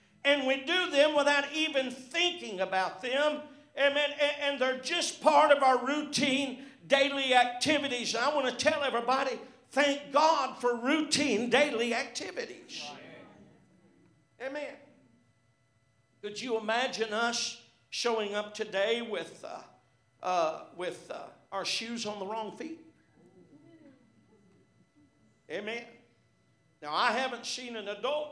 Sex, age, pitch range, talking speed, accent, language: male, 50-69, 215-275 Hz, 120 wpm, American, English